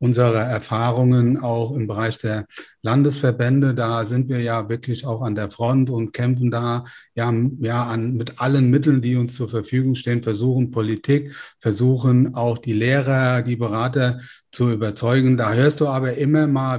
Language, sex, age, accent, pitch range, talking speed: German, male, 30-49, German, 120-145 Hz, 160 wpm